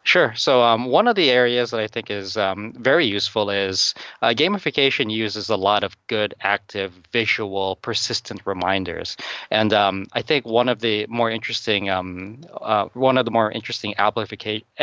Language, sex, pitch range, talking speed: English, male, 100-120 Hz, 175 wpm